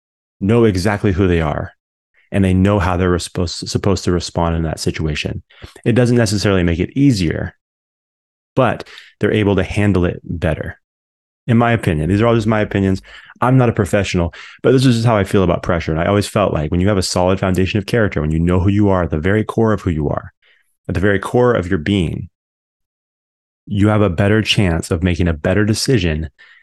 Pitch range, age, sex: 85-105 Hz, 30-49, male